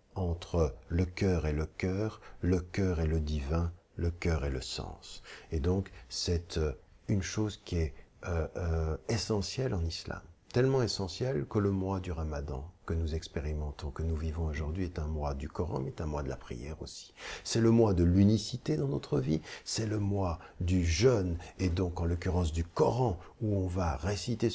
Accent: French